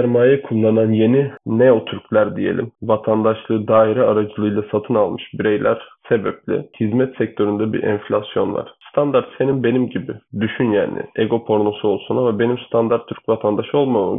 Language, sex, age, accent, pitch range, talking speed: Turkish, male, 20-39, native, 105-125 Hz, 140 wpm